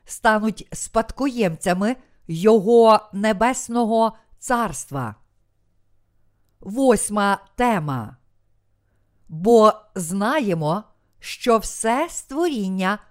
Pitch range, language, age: 155-235 Hz, Ukrainian, 50-69